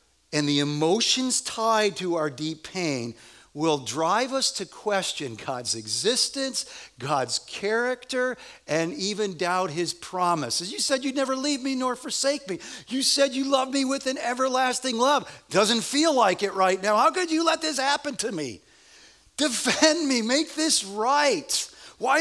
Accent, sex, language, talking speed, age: American, male, English, 160 wpm, 40-59